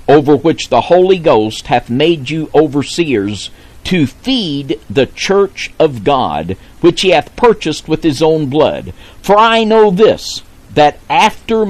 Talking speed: 150 wpm